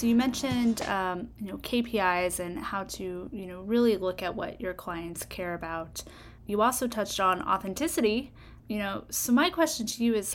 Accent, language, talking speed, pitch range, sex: American, English, 190 wpm, 185-235 Hz, female